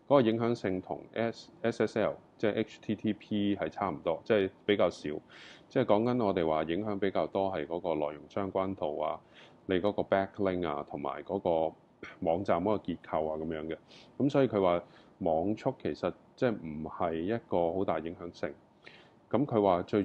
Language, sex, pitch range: Chinese, male, 85-105 Hz